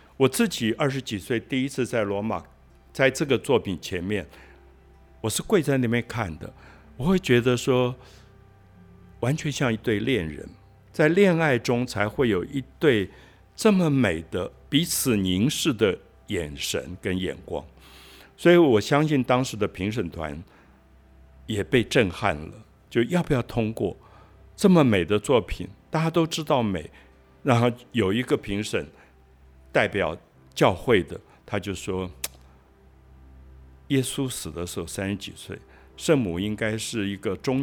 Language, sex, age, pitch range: Chinese, male, 60-79, 85-120 Hz